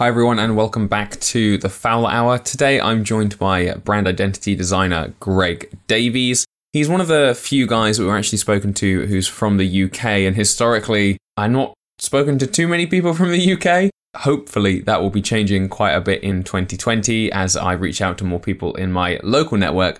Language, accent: English, British